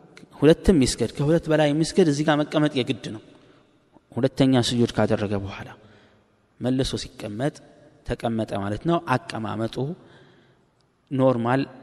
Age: 20-39